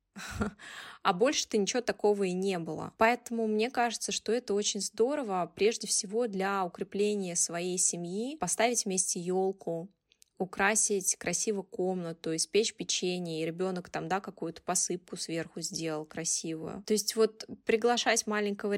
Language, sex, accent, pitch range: Russian, female, native, 180-225 Hz